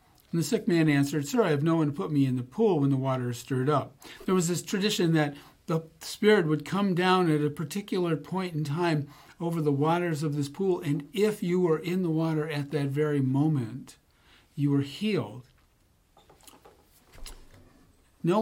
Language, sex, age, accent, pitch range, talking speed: English, male, 50-69, American, 140-180 Hz, 190 wpm